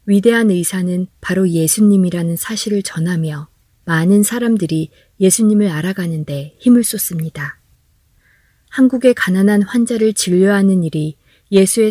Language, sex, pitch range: Korean, female, 155-215 Hz